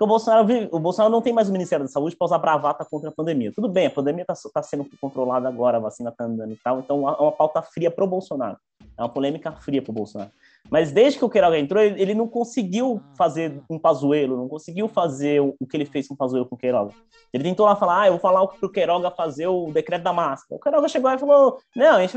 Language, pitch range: Portuguese, 150-225 Hz